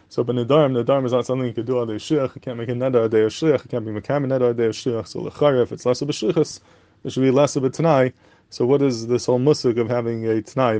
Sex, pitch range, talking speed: male, 120-140 Hz, 315 wpm